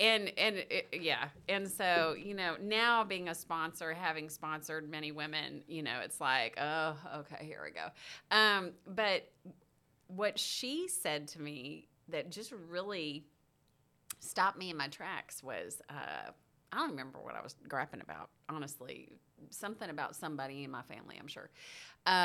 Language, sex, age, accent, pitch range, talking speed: English, female, 30-49, American, 155-215 Hz, 160 wpm